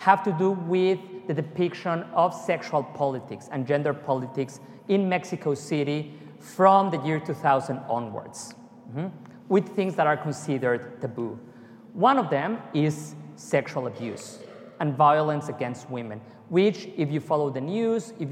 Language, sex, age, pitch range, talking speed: English, male, 40-59, 135-175 Hz, 145 wpm